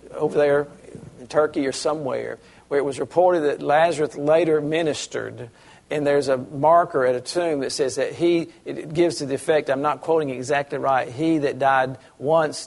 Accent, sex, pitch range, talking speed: American, male, 130-160 Hz, 185 wpm